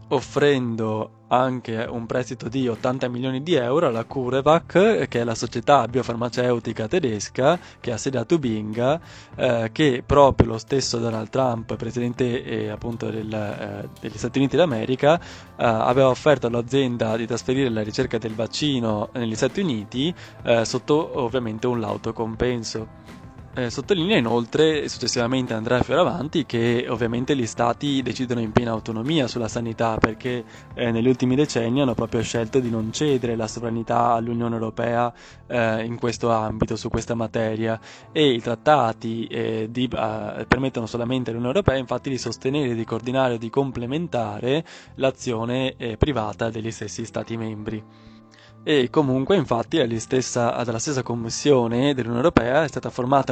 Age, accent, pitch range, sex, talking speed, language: 20-39, native, 115-130 Hz, male, 145 wpm, Italian